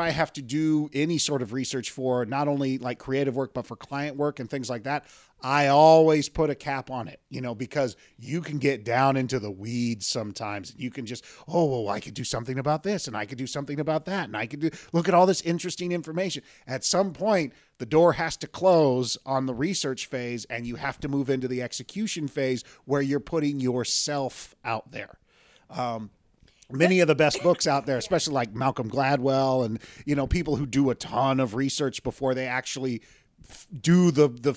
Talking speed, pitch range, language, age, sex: 215 wpm, 125-165 Hz, English, 30-49, male